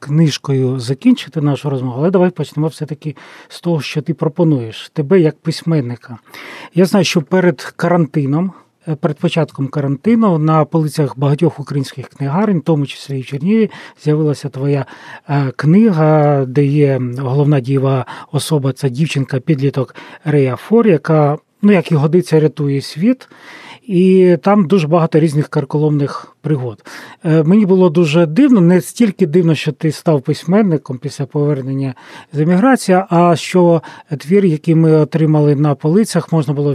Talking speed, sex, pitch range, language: 140 wpm, male, 140-175 Hz, Ukrainian